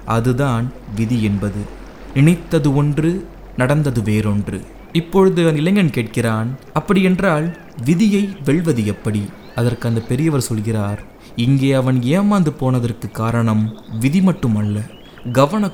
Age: 20-39